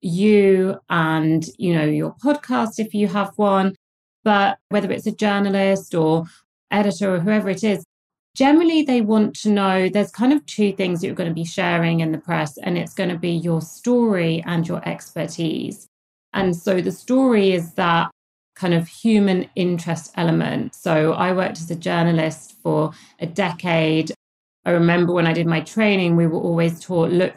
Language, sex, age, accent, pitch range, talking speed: English, female, 30-49, British, 165-200 Hz, 180 wpm